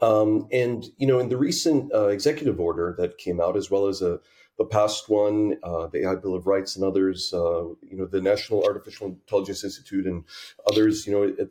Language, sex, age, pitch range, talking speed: English, male, 40-59, 95-110 Hz, 215 wpm